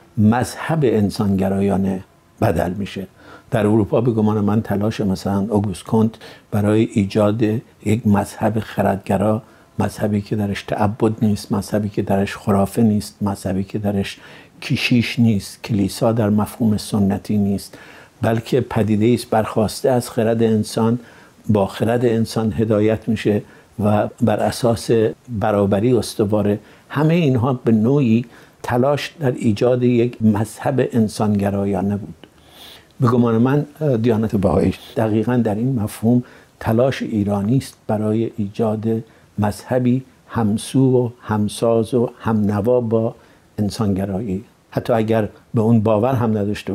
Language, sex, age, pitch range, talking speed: Persian, male, 60-79, 105-115 Hz, 125 wpm